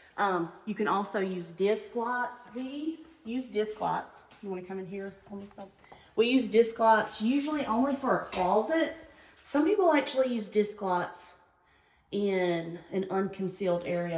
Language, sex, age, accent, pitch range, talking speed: English, female, 30-49, American, 180-225 Hz, 160 wpm